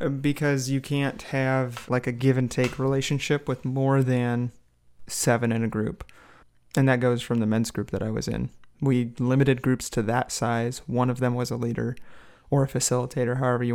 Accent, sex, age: American, male, 30-49